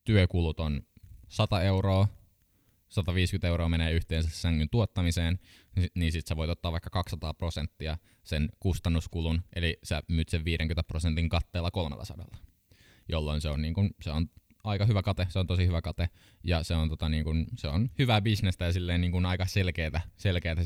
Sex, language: male, Finnish